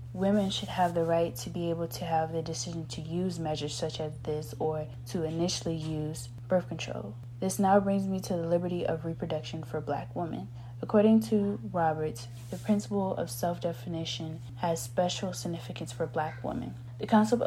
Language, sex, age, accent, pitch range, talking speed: English, female, 20-39, American, 150-170 Hz, 175 wpm